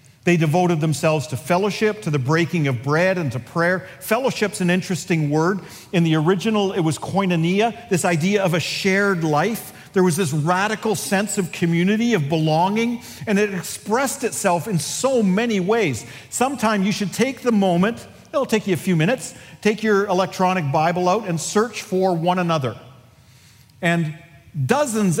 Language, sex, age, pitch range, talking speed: English, male, 50-69, 140-205 Hz, 165 wpm